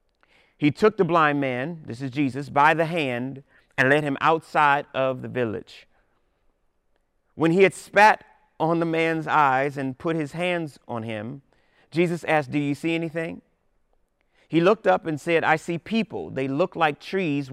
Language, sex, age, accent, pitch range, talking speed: English, male, 30-49, American, 150-190 Hz, 170 wpm